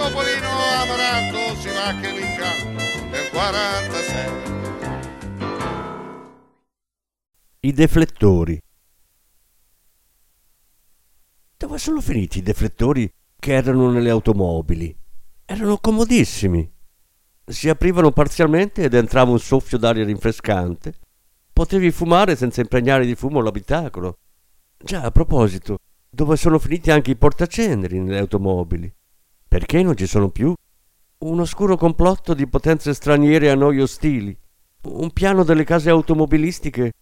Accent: native